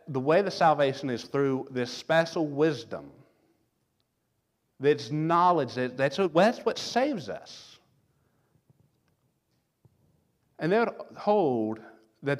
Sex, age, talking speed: male, 50-69, 95 wpm